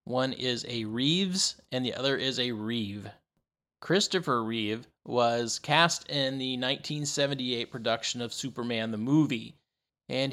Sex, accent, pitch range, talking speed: male, American, 120-150 Hz, 135 wpm